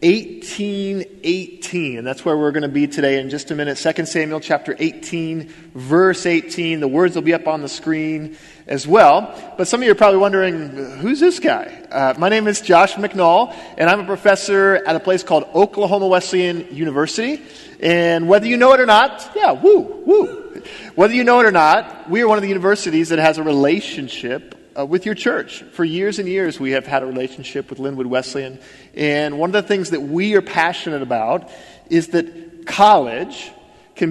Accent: American